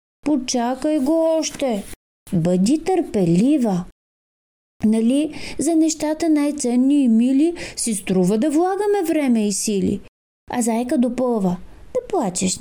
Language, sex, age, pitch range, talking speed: Bulgarian, female, 30-49, 215-330 Hz, 115 wpm